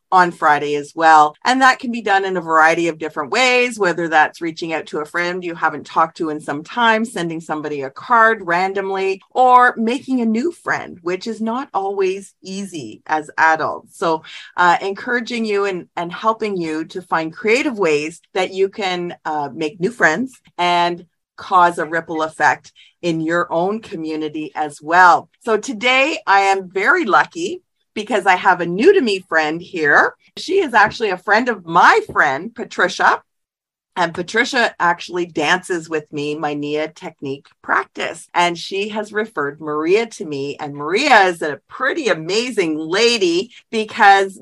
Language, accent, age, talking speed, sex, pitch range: English, American, 40-59, 165 wpm, female, 165-225 Hz